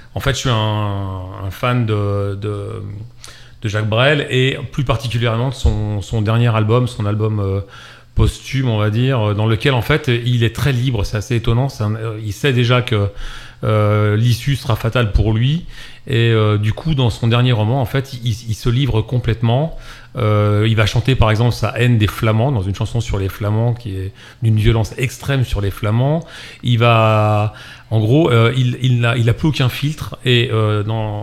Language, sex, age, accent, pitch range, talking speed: French, male, 40-59, French, 105-125 Hz, 200 wpm